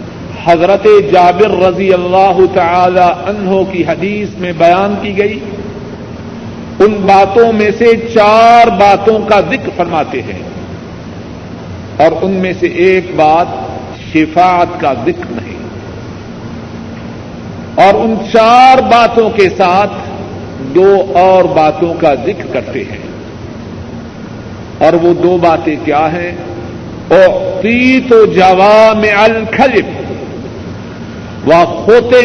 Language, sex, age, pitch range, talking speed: Urdu, male, 50-69, 180-230 Hz, 110 wpm